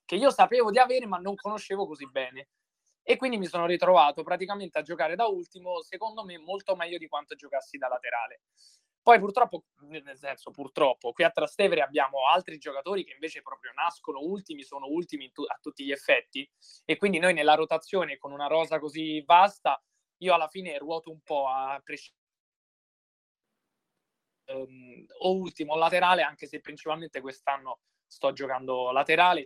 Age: 20-39